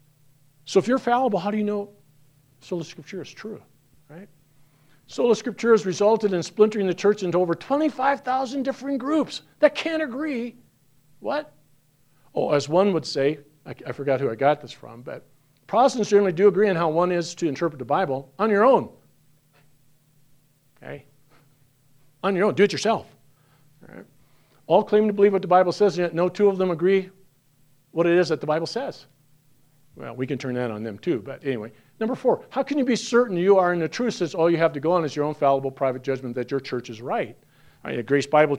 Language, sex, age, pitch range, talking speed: English, male, 50-69, 140-200 Hz, 205 wpm